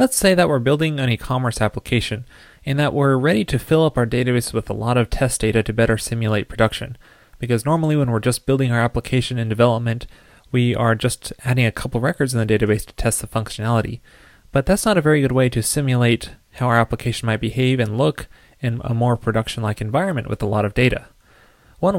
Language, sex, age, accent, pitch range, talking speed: English, male, 20-39, American, 110-130 Hz, 215 wpm